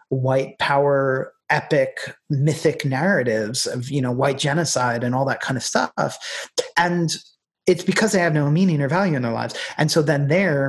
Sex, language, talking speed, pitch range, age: male, English, 180 wpm, 120-165 Hz, 30-49